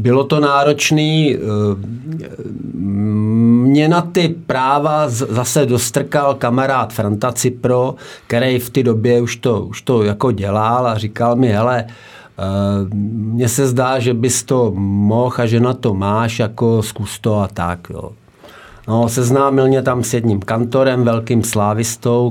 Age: 50-69